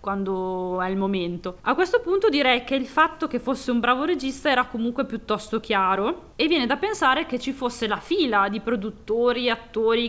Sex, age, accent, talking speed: female, 20-39, native, 195 wpm